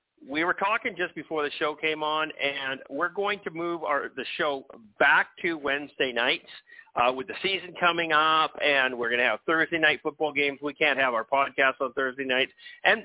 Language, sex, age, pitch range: English, male, 50-69, 140-175 Hz